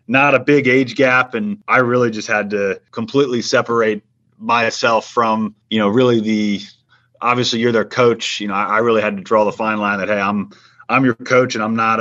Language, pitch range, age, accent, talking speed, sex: English, 105-120 Hz, 30-49, American, 210 wpm, male